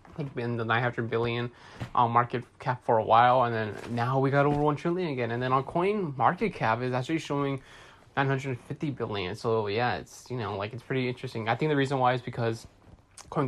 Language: English